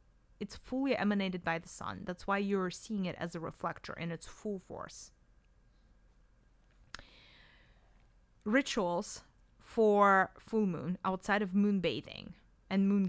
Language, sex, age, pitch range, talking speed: English, female, 30-49, 180-225 Hz, 130 wpm